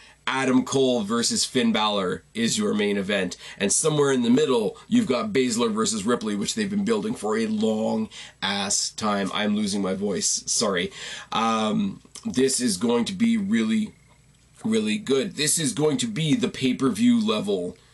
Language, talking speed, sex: English, 160 wpm, male